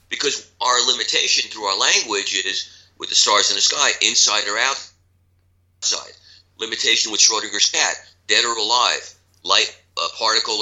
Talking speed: 155 wpm